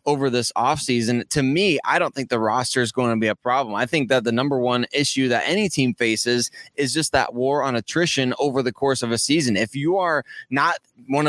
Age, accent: 20-39, American